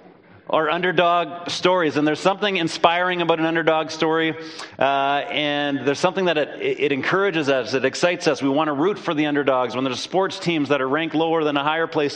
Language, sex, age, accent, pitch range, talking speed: English, male, 40-59, American, 140-170 Hz, 205 wpm